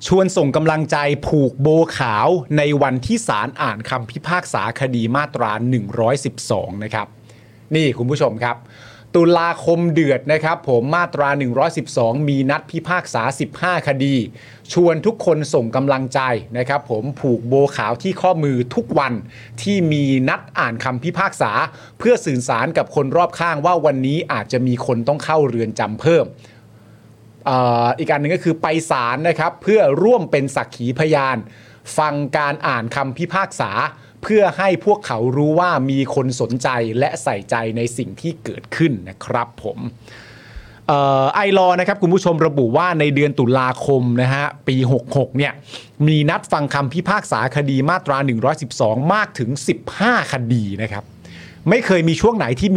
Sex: male